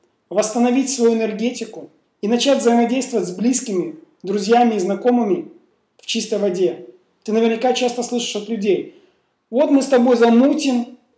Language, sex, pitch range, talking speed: Russian, male, 195-245 Hz, 135 wpm